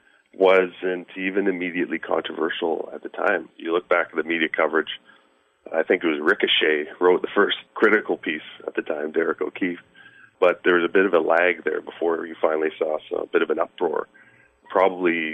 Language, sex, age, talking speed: English, male, 40-59, 190 wpm